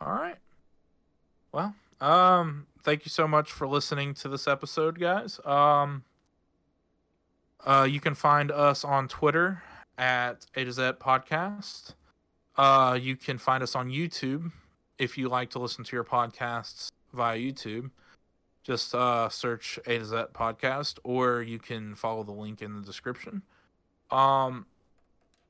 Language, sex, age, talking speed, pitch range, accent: English, male, 20-39, 145 wpm, 110-135 Hz, American